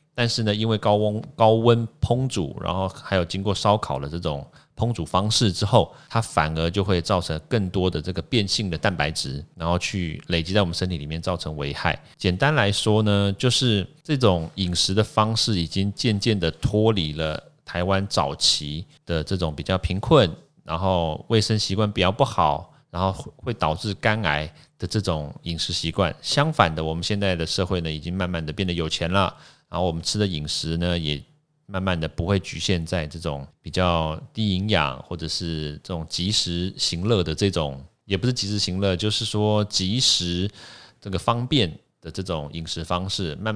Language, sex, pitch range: Chinese, male, 85-110 Hz